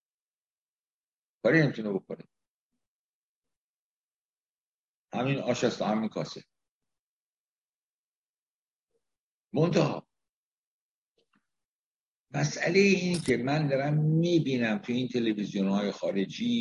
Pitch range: 110-150 Hz